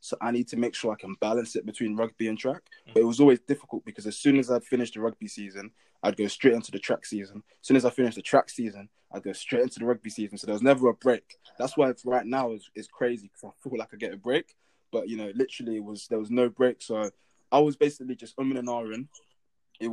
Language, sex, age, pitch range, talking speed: English, male, 20-39, 105-125 Hz, 280 wpm